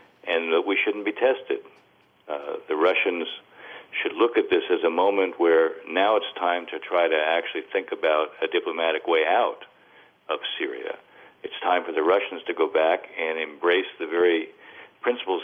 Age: 50-69